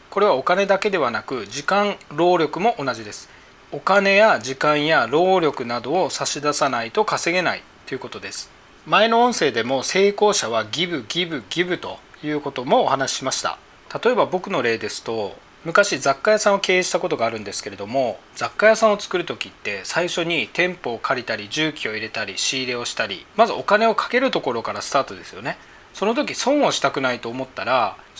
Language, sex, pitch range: Japanese, male, 130-200 Hz